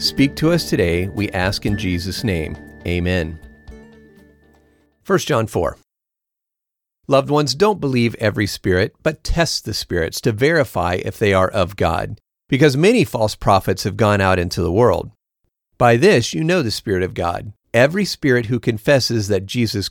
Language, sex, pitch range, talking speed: English, male, 95-130 Hz, 165 wpm